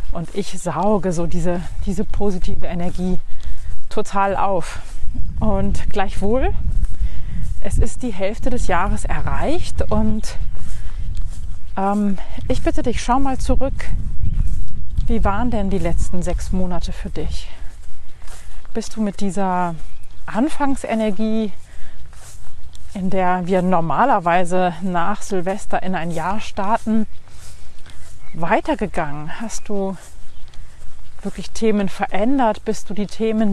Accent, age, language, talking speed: German, 30-49, German, 110 wpm